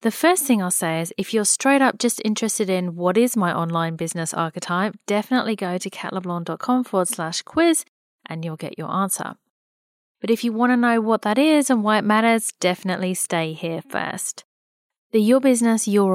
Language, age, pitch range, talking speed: English, 40-59, 185-235 Hz, 195 wpm